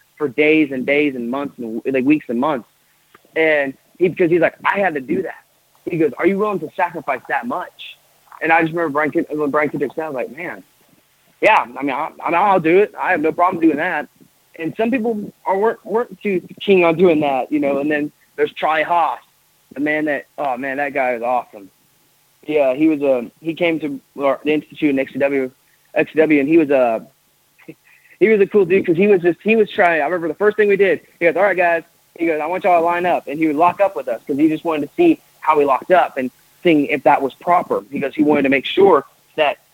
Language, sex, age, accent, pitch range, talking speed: English, male, 30-49, American, 140-175 Hz, 245 wpm